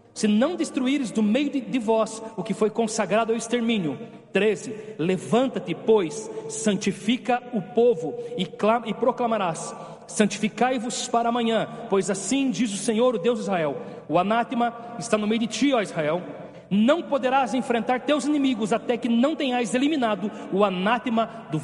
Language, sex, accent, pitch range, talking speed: Portuguese, male, Brazilian, 175-230 Hz, 150 wpm